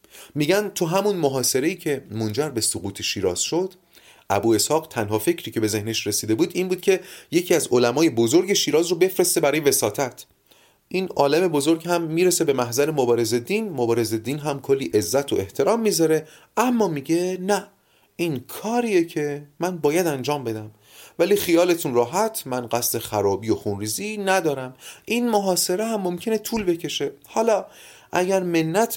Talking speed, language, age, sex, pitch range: 155 wpm, Persian, 30-49, male, 120-185 Hz